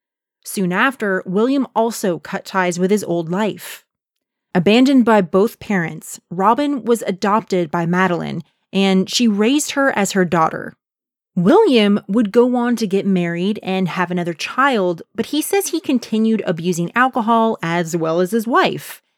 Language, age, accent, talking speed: English, 30-49, American, 155 wpm